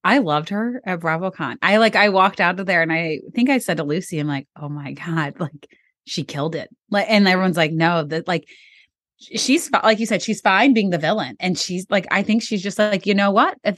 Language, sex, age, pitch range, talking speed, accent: English, female, 30-49, 155-210 Hz, 245 wpm, American